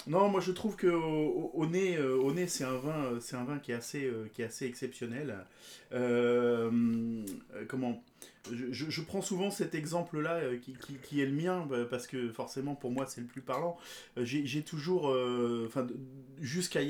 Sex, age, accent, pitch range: male, 30-49, French, 120-150 Hz